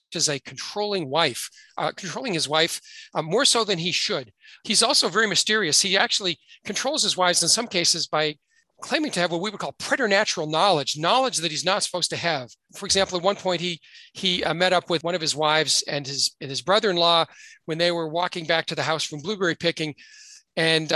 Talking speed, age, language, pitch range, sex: 215 wpm, 40-59, English, 165-225 Hz, male